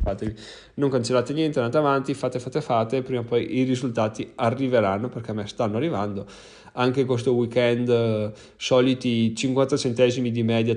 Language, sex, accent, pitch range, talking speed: Italian, male, native, 110-140 Hz, 150 wpm